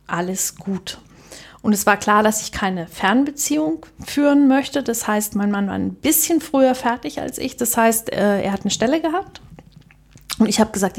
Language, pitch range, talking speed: German, 195-255 Hz, 185 wpm